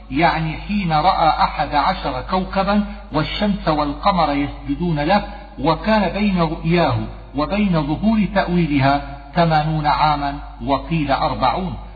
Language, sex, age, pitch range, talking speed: Arabic, male, 50-69, 155-190 Hz, 100 wpm